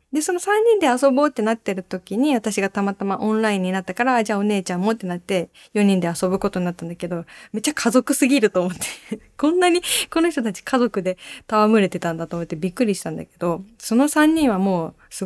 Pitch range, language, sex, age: 185-290 Hz, Japanese, female, 20-39